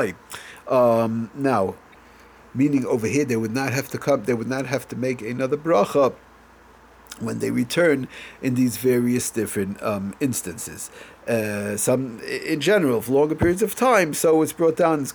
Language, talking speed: English, 170 wpm